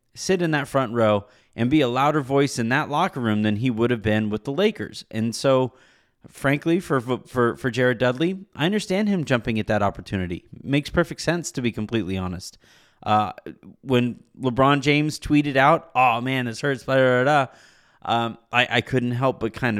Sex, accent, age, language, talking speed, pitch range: male, American, 30-49, English, 195 wpm, 110-145 Hz